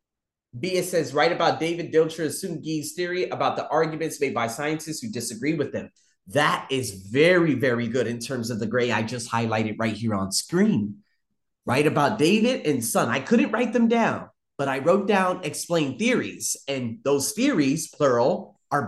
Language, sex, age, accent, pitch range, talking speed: English, male, 30-49, American, 125-175 Hz, 180 wpm